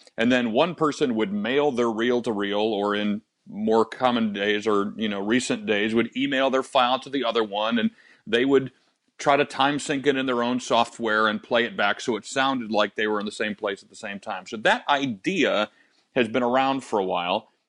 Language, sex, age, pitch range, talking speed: English, male, 40-59, 110-145 Hz, 225 wpm